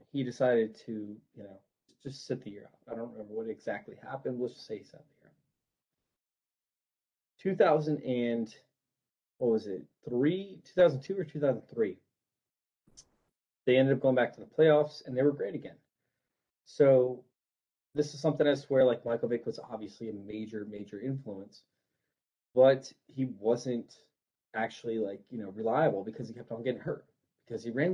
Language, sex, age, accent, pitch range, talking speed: English, male, 20-39, American, 115-150 Hz, 170 wpm